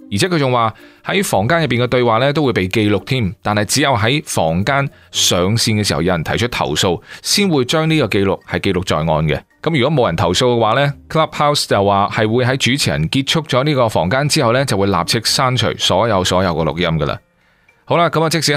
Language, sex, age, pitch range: Chinese, male, 30-49, 95-140 Hz